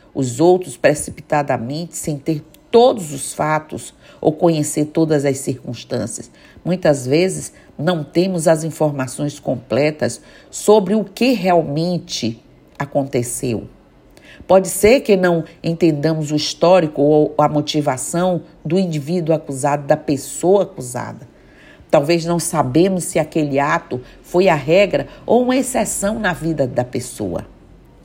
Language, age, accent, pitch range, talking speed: Portuguese, 50-69, Brazilian, 145-180 Hz, 120 wpm